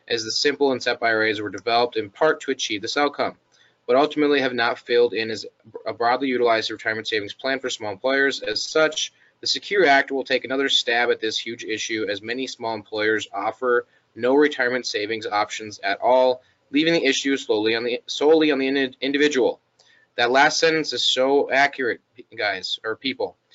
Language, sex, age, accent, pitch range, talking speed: English, male, 20-39, American, 120-150 Hz, 185 wpm